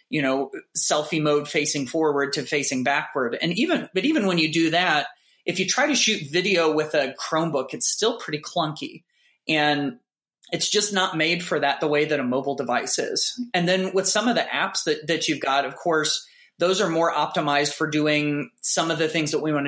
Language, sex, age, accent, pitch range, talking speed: English, male, 30-49, American, 145-175 Hz, 215 wpm